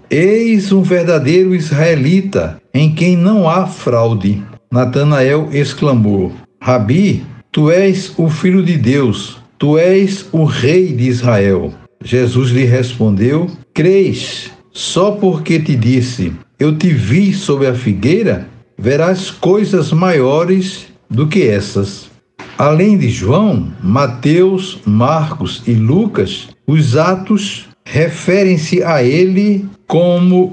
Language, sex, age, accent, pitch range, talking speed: Portuguese, male, 60-79, Brazilian, 125-180 Hz, 110 wpm